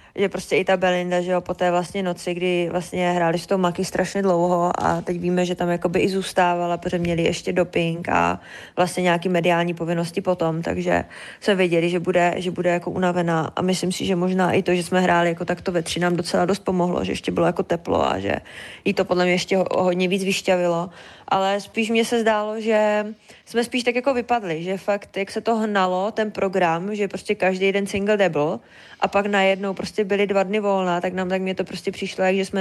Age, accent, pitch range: 20-39, native, 175-200 Hz